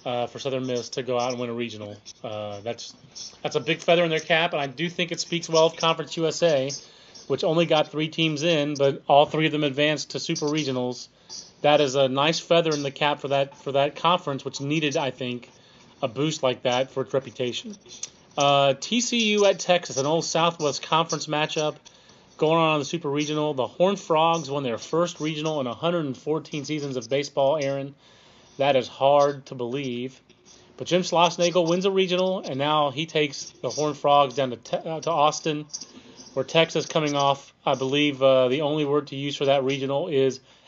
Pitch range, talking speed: 135-160 Hz, 200 wpm